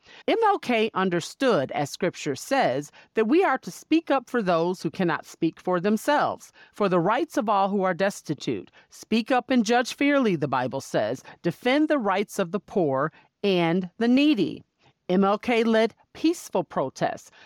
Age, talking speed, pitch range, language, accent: 40-59, 160 wpm, 180-255 Hz, English, American